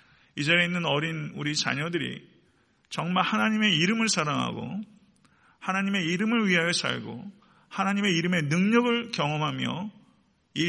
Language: Korean